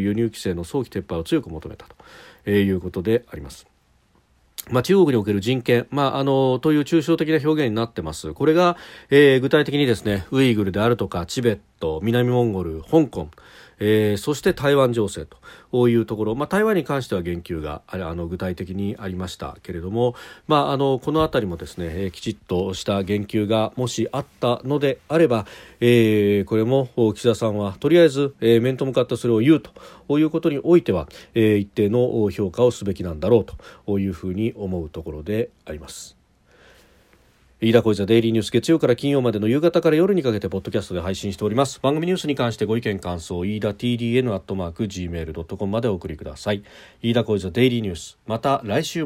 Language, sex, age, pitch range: Japanese, male, 40-59, 95-135 Hz